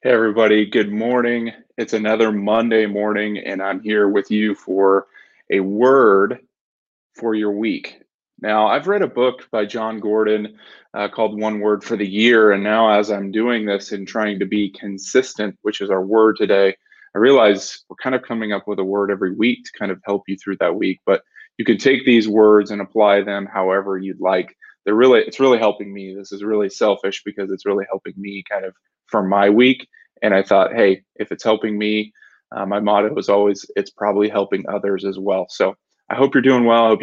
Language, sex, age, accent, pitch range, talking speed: English, male, 20-39, American, 100-115 Hz, 210 wpm